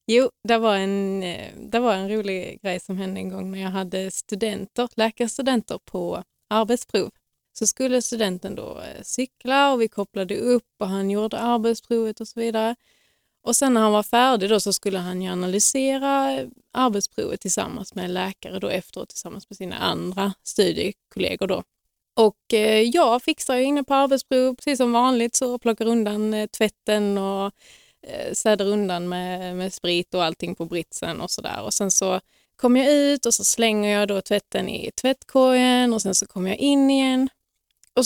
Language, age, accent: Swedish, 20-39, native